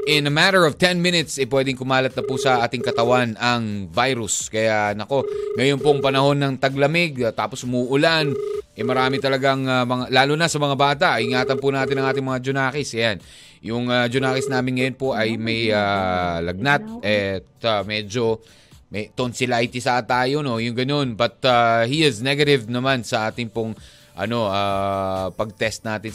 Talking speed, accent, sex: 180 wpm, native, male